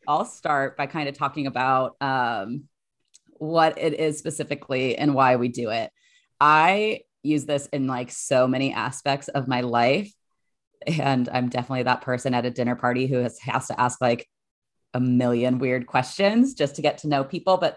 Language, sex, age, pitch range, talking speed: English, female, 30-49, 130-150 Hz, 180 wpm